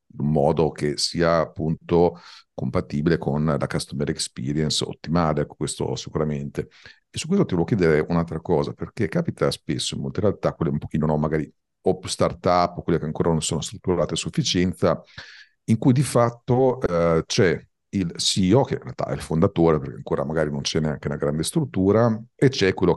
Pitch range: 80-95 Hz